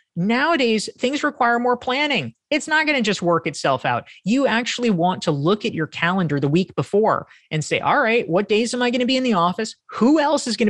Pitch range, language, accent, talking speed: 145-210 Hz, English, American, 235 wpm